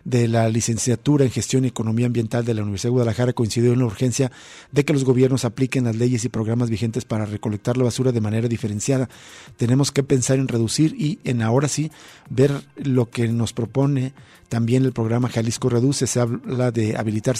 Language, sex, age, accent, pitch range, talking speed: Spanish, male, 50-69, Mexican, 115-130 Hz, 195 wpm